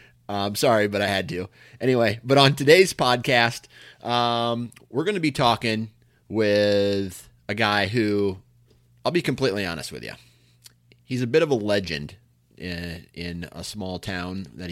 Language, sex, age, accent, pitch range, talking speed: English, male, 30-49, American, 95-120 Hz, 165 wpm